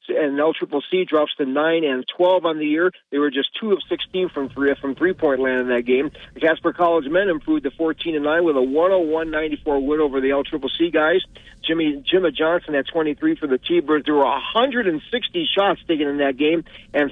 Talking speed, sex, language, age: 230 wpm, male, English, 40-59